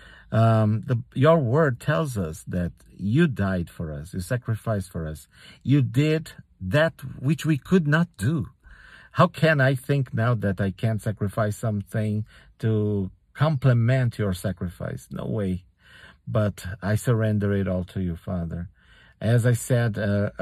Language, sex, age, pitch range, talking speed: English, male, 50-69, 95-125 Hz, 145 wpm